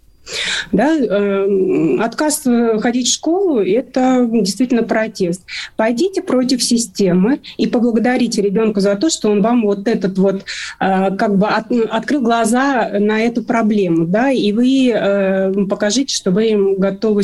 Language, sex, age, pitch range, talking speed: Russian, female, 30-49, 200-255 Hz, 125 wpm